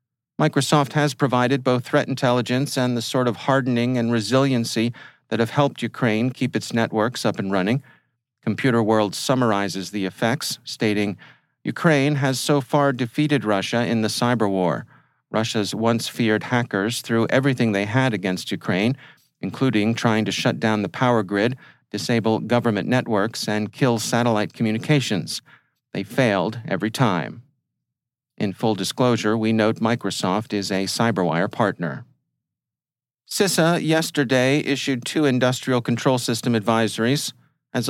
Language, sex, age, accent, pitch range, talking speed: English, male, 40-59, American, 110-130 Hz, 140 wpm